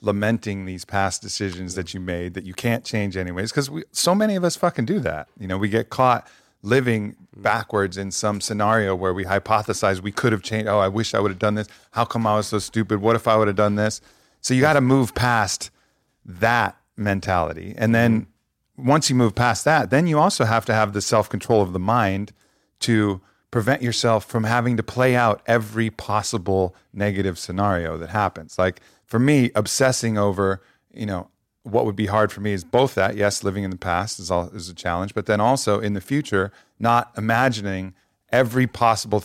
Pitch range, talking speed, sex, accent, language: 100-120 Hz, 205 wpm, male, American, English